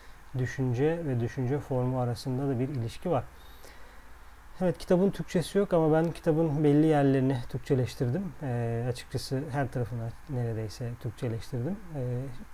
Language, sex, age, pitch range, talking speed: Turkish, male, 40-59, 125-150 Hz, 125 wpm